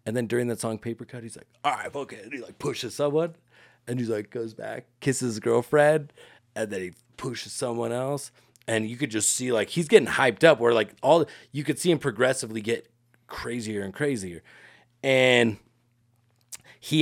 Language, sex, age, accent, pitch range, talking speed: English, male, 30-49, American, 110-135 Hz, 200 wpm